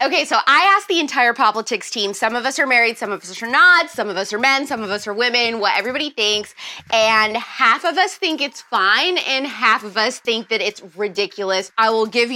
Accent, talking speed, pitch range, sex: American, 240 wpm, 215-315 Hz, female